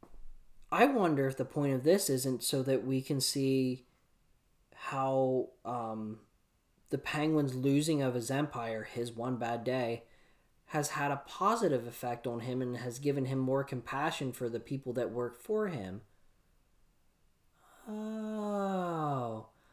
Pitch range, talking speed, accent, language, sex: 125-185 Hz, 140 wpm, American, English, male